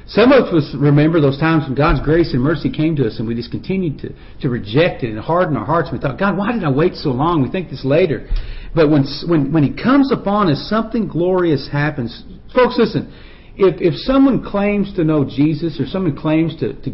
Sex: male